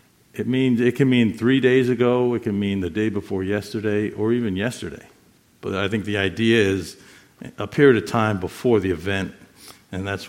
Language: English